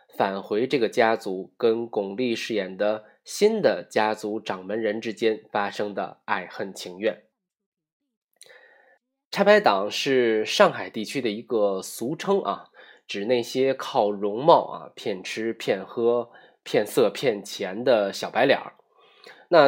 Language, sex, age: Chinese, male, 20-39